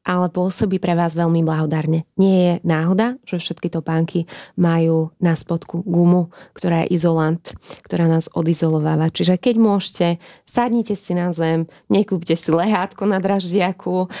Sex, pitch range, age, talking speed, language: female, 165-195 Hz, 20-39, 150 wpm, Slovak